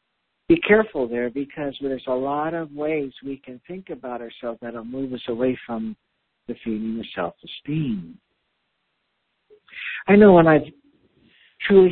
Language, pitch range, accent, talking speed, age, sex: English, 125-160 Hz, American, 145 wpm, 60-79, male